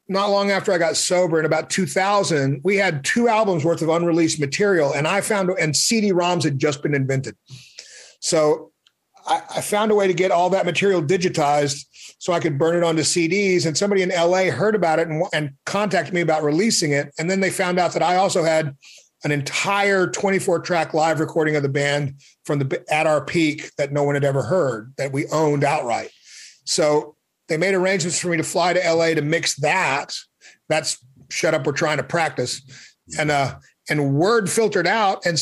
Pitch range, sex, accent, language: 145-185 Hz, male, American, English